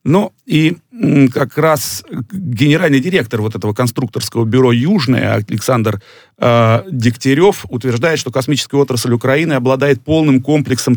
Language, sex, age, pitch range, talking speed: Russian, male, 40-59, 115-145 Hz, 120 wpm